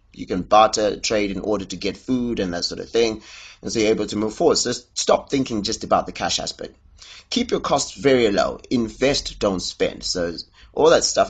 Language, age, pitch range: English, 30-49, 95-135 Hz